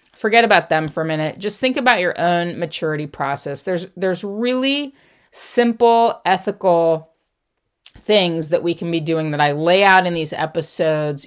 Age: 40-59